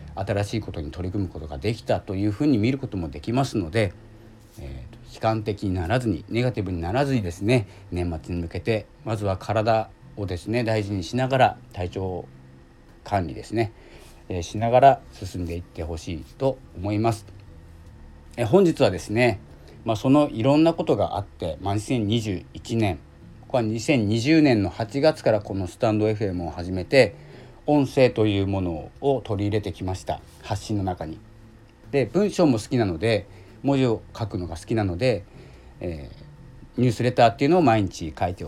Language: Japanese